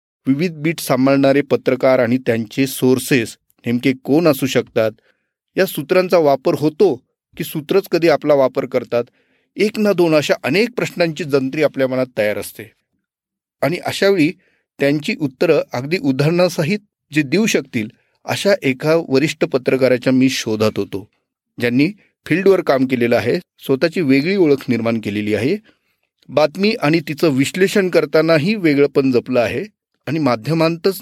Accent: native